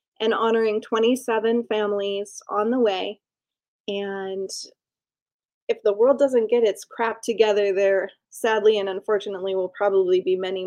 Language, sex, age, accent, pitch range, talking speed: English, female, 20-39, American, 190-230 Hz, 135 wpm